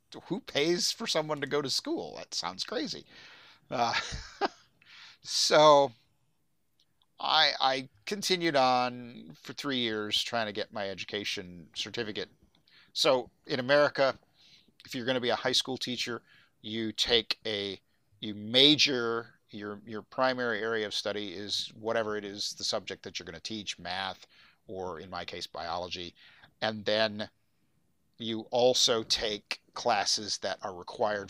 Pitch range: 105-130 Hz